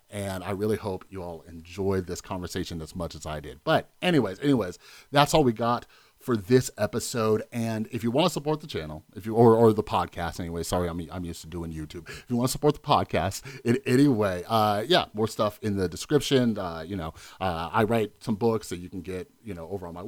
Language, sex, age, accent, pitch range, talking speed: English, male, 30-49, American, 85-115 Hz, 240 wpm